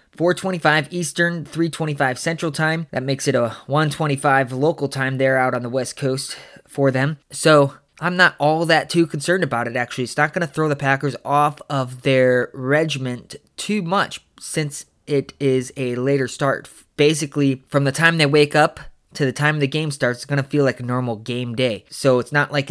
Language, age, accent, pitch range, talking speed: English, 20-39, American, 135-155 Hz, 200 wpm